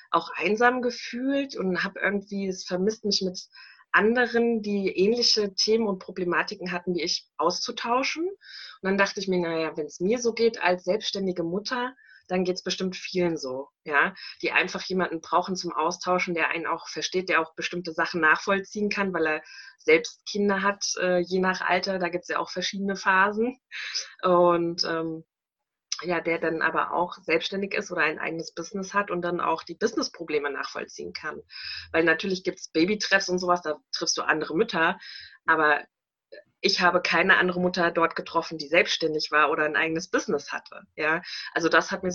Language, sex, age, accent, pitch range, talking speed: German, female, 20-39, German, 160-195 Hz, 180 wpm